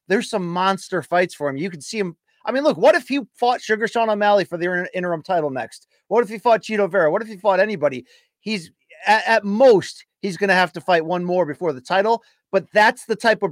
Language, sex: English, male